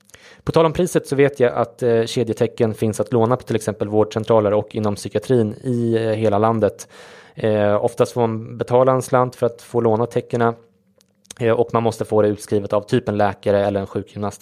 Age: 20-39